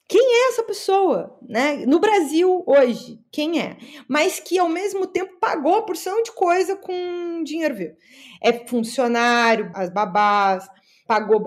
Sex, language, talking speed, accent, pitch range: female, Portuguese, 140 wpm, Brazilian, 220-315 Hz